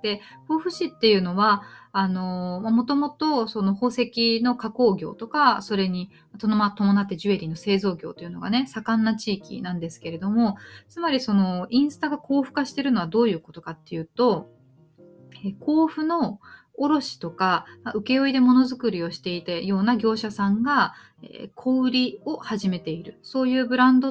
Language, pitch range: Japanese, 190-260 Hz